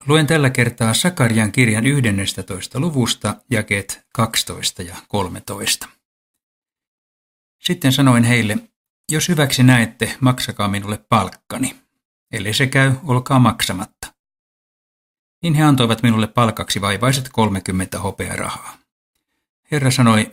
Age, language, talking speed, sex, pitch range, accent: 60-79, Finnish, 105 wpm, male, 100-130 Hz, native